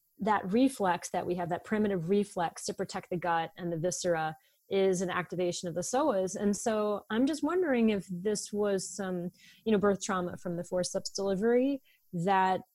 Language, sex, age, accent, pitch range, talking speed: English, female, 30-49, American, 175-225 Hz, 185 wpm